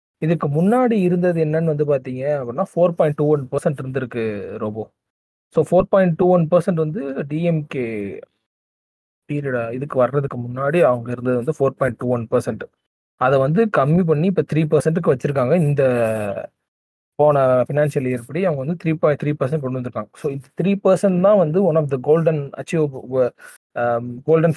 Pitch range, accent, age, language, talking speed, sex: 130-170 Hz, native, 20-39, Tamil, 160 wpm, male